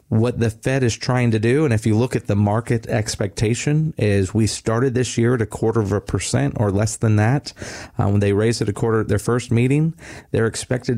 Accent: American